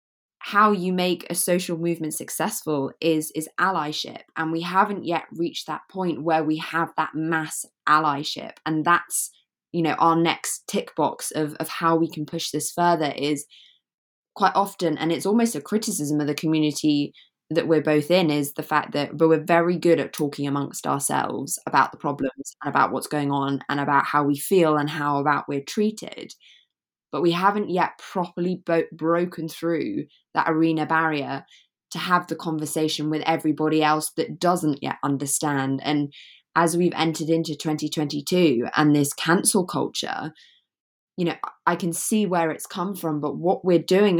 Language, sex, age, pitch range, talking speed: English, female, 20-39, 150-175 Hz, 175 wpm